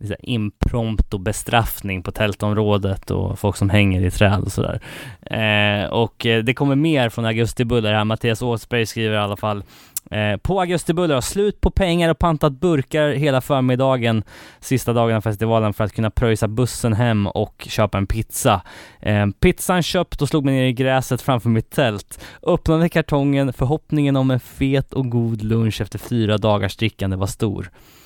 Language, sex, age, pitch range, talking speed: Swedish, male, 10-29, 110-140 Hz, 170 wpm